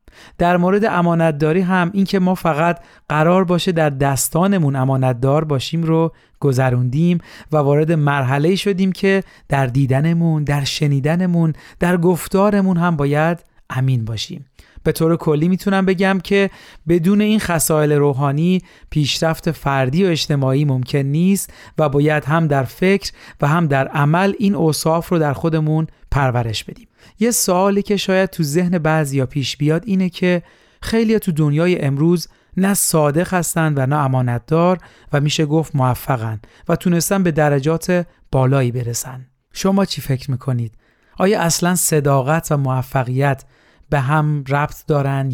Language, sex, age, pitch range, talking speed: Persian, male, 40-59, 135-175 Hz, 140 wpm